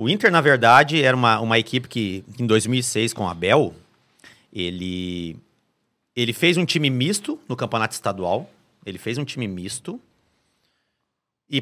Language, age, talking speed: Portuguese, 40-59, 150 wpm